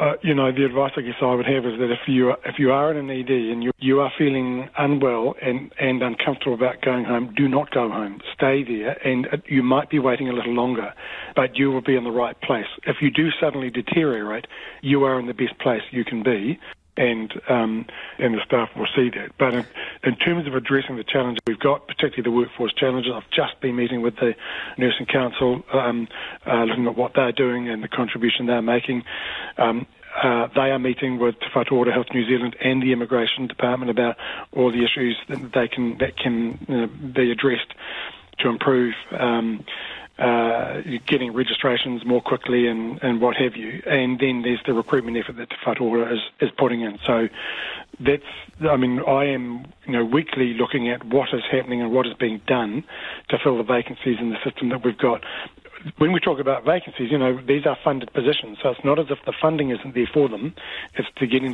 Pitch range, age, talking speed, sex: 120-135 Hz, 40-59, 210 wpm, male